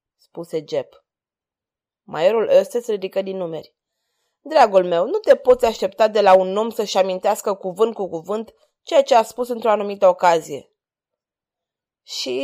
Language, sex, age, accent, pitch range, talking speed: Romanian, female, 20-39, native, 195-275 Hz, 150 wpm